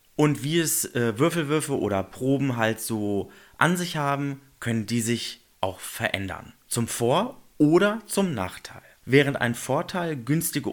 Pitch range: 105-145 Hz